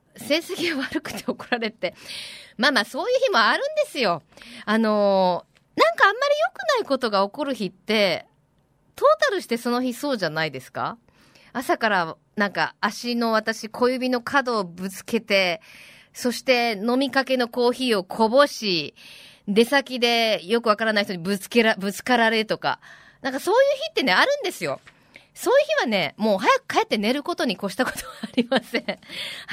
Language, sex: Japanese, female